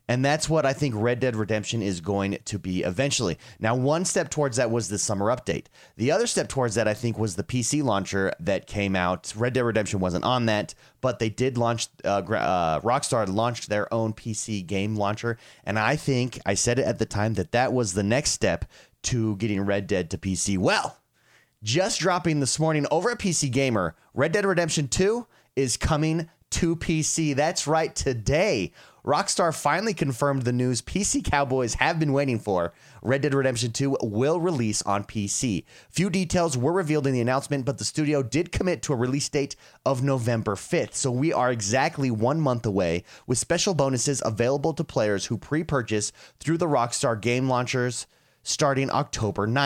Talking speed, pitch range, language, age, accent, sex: 190 wpm, 110-145 Hz, English, 30-49, American, male